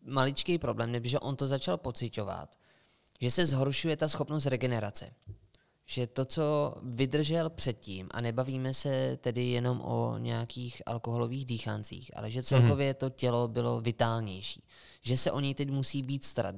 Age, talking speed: 20-39, 155 wpm